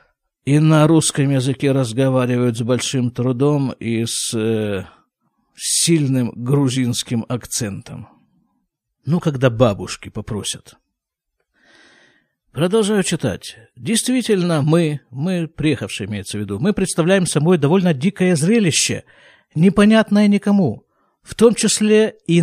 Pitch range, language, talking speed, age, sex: 130-180 Hz, Russian, 105 wpm, 50-69, male